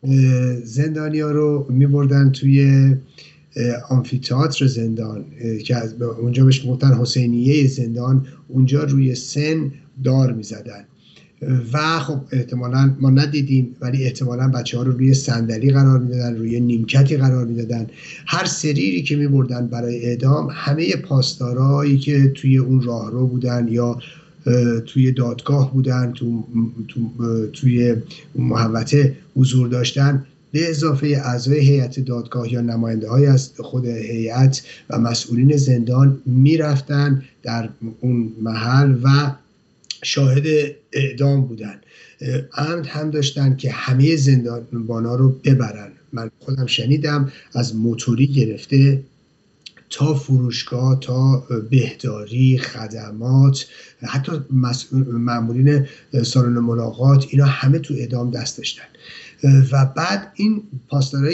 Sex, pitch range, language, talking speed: male, 120-140 Hz, Persian, 115 wpm